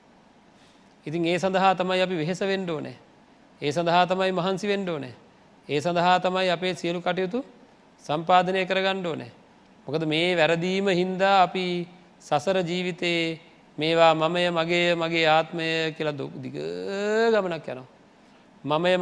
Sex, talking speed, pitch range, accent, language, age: male, 135 wpm, 140-180 Hz, Indian, English, 40-59